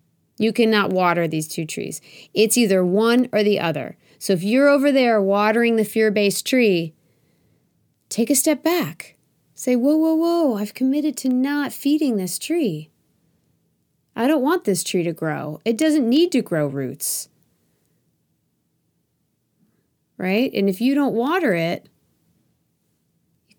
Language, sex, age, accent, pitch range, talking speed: English, female, 30-49, American, 160-220 Hz, 145 wpm